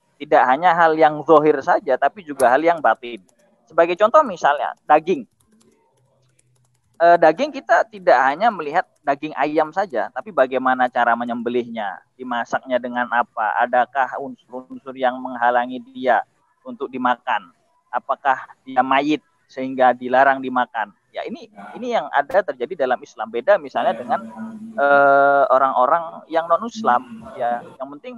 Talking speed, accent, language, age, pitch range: 130 wpm, native, Indonesian, 20-39, 125-195 Hz